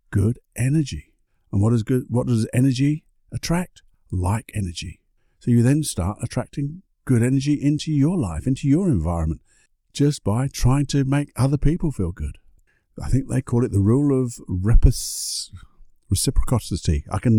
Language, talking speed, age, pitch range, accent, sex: English, 155 wpm, 50-69, 90-125 Hz, British, male